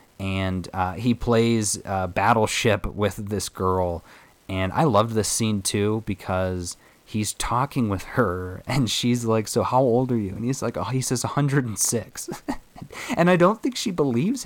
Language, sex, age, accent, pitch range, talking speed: English, male, 20-39, American, 100-125 Hz, 170 wpm